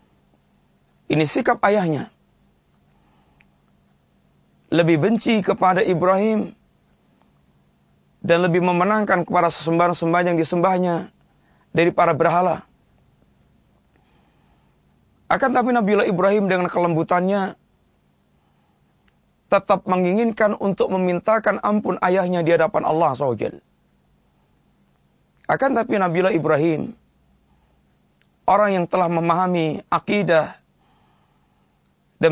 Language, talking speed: English, 80 wpm